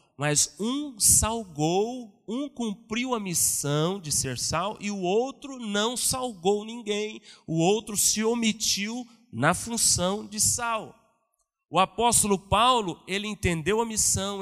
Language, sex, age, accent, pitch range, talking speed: Portuguese, male, 40-59, Brazilian, 170-220 Hz, 130 wpm